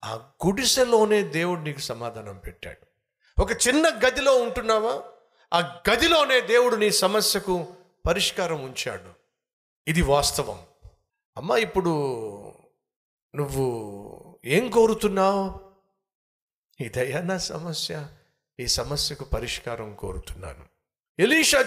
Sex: male